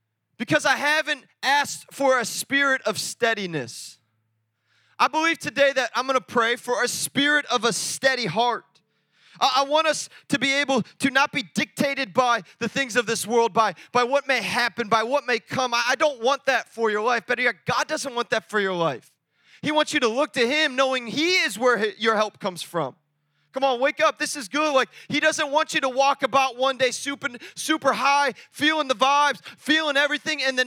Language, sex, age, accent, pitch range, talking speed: English, male, 20-39, American, 235-295 Hz, 205 wpm